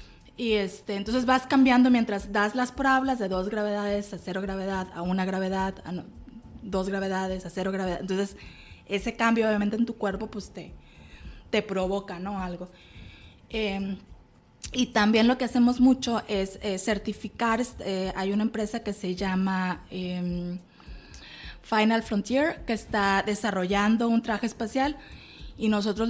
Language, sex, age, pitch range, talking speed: Spanish, female, 20-39, 190-220 Hz, 150 wpm